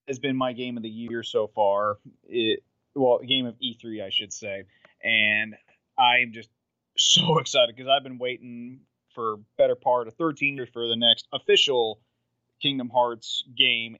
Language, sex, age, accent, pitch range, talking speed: English, male, 30-49, American, 110-135 Hz, 165 wpm